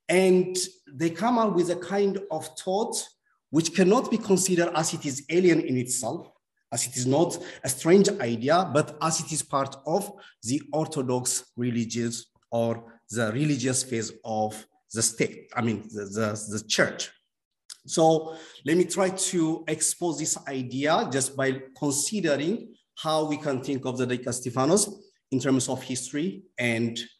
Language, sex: English, male